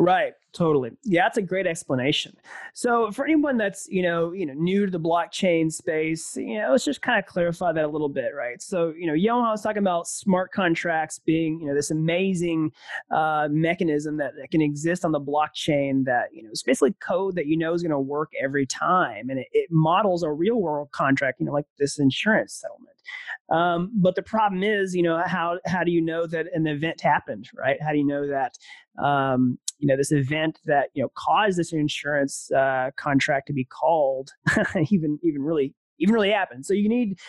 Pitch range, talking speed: 150-200 Hz, 215 wpm